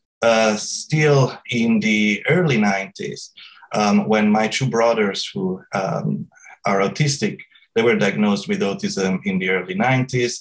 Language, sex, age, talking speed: English, male, 30-49, 140 wpm